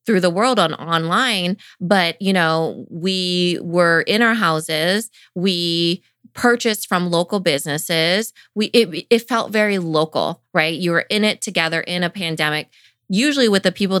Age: 20-39